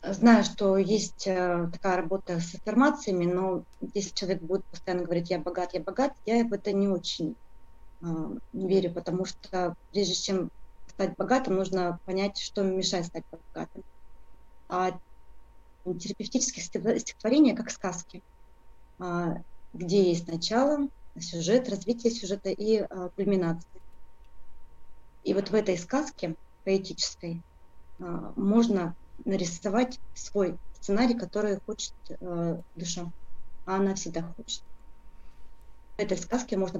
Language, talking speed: Russian, 115 wpm